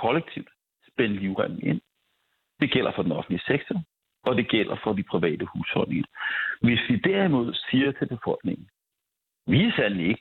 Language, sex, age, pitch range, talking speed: Danish, male, 60-79, 100-140 Hz, 160 wpm